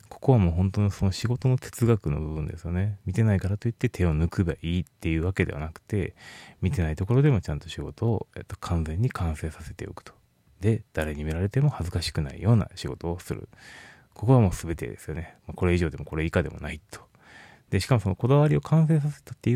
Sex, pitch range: male, 80-115 Hz